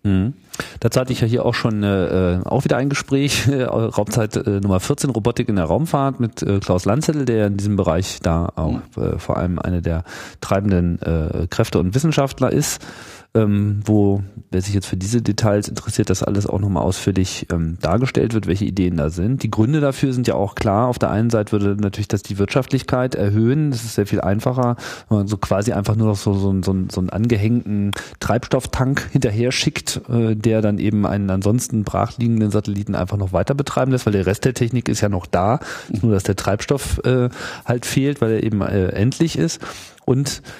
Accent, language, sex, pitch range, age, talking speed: German, German, male, 100-125 Hz, 40-59, 200 wpm